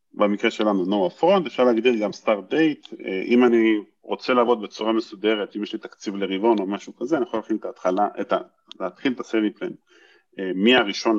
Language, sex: Hebrew, male